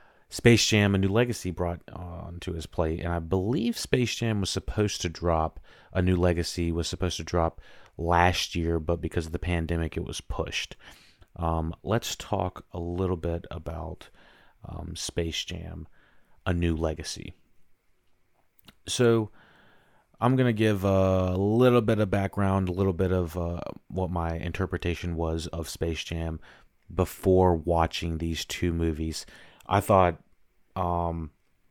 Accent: American